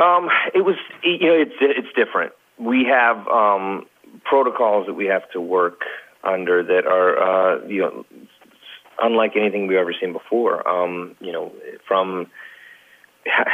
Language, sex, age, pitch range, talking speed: English, male, 30-49, 100-135 Hz, 150 wpm